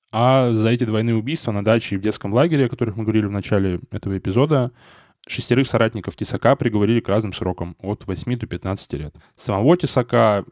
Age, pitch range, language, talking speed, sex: 10-29, 100-125 Hz, Russian, 190 wpm, male